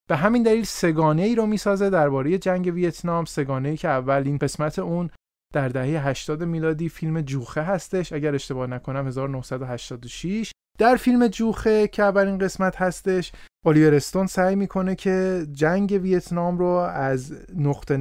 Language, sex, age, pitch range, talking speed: Persian, male, 30-49, 135-185 Hz, 155 wpm